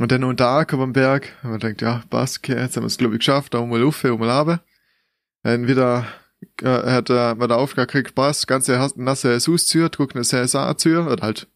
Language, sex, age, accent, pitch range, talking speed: German, male, 20-39, German, 125-150 Hz, 240 wpm